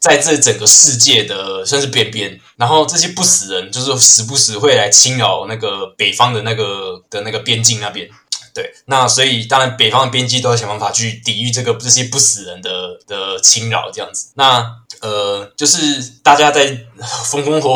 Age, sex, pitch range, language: 20-39, male, 110-135 Hz, Chinese